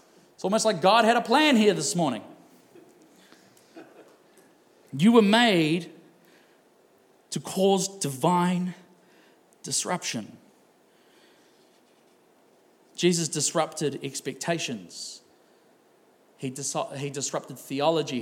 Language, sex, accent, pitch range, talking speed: English, male, Australian, 135-170 Hz, 80 wpm